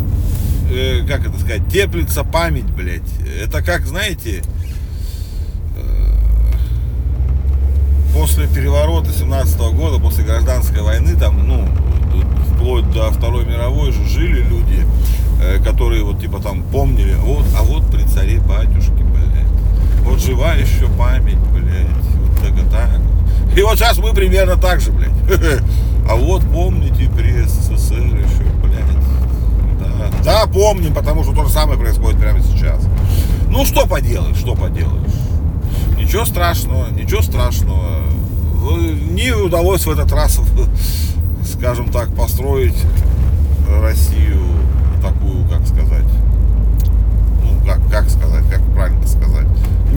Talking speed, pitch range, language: 115 wpm, 80-90 Hz, Russian